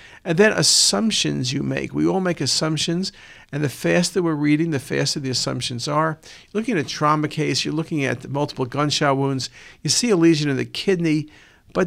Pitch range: 130-160 Hz